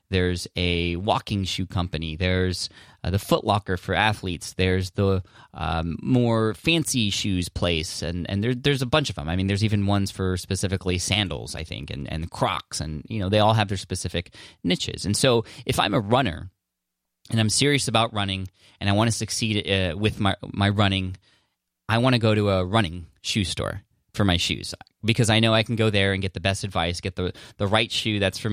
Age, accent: 20-39, American